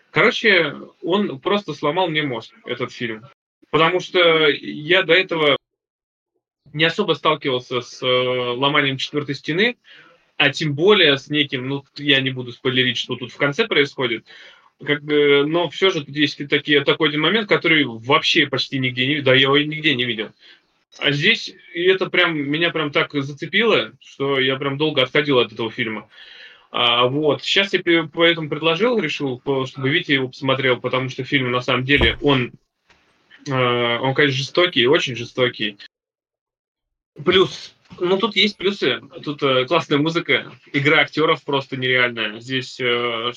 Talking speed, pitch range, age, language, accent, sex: 155 wpm, 125-160 Hz, 20-39, Russian, native, male